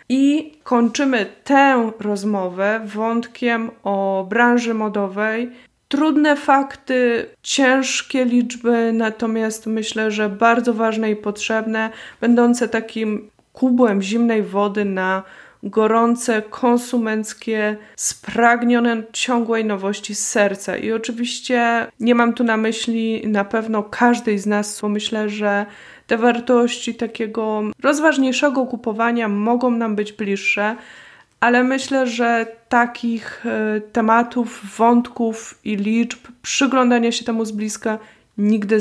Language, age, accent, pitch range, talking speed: Polish, 20-39, native, 215-240 Hz, 110 wpm